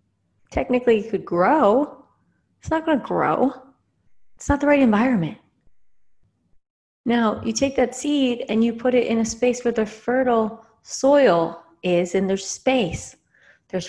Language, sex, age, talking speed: English, female, 30-49, 145 wpm